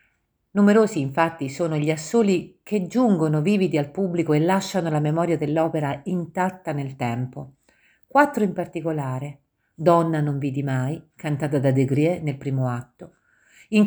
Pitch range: 140-185 Hz